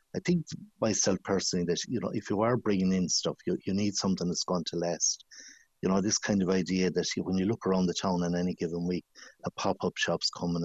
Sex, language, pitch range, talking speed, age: male, English, 90-115 Hz, 235 wpm, 60-79